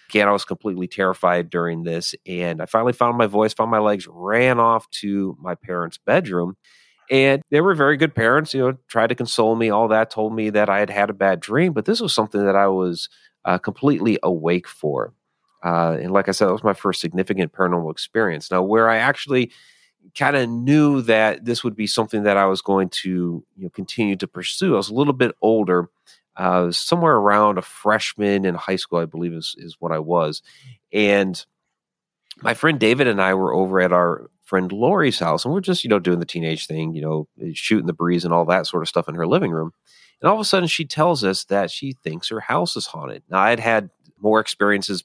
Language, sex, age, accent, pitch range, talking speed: English, male, 40-59, American, 90-115 Hz, 220 wpm